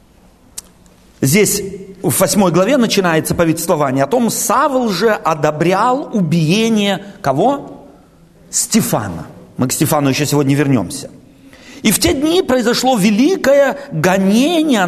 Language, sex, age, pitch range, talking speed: Russian, male, 50-69, 170-255 Hz, 110 wpm